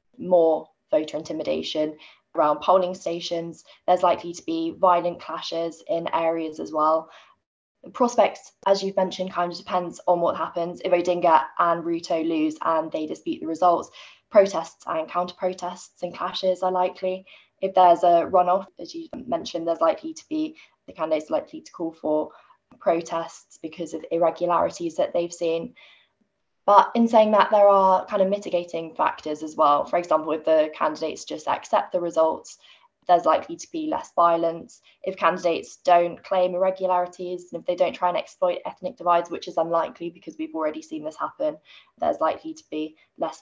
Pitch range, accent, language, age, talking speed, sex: 165-195 Hz, British, English, 20-39, 170 wpm, female